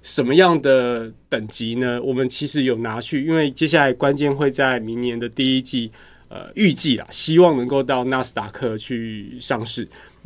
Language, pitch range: Chinese, 120-150 Hz